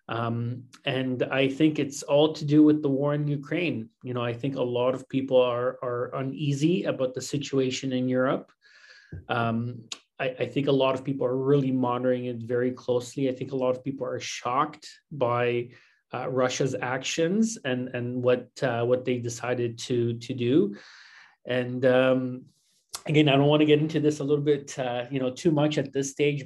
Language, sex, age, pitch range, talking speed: English, male, 30-49, 125-140 Hz, 195 wpm